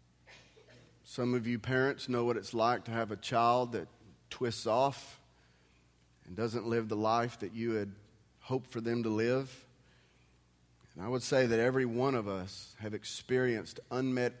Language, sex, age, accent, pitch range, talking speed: English, male, 30-49, American, 105-140 Hz, 165 wpm